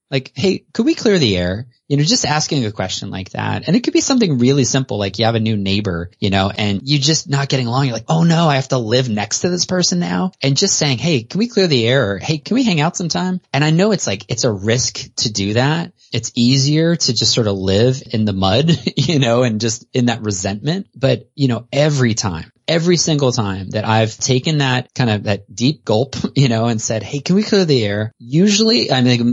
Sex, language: male, English